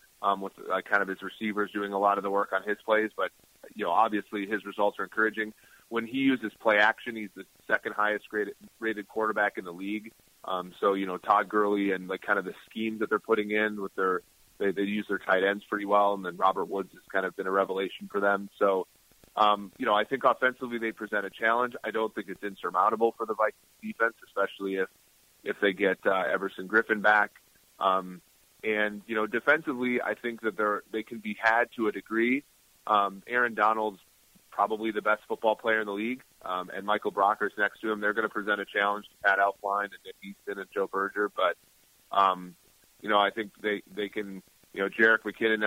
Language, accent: English, American